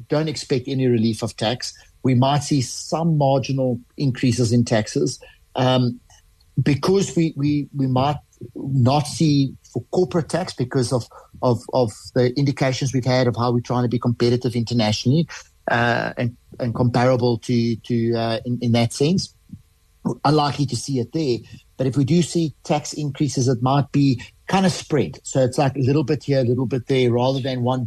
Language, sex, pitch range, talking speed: English, male, 120-140 Hz, 180 wpm